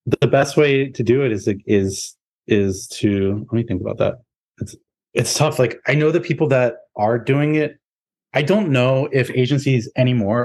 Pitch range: 95-120 Hz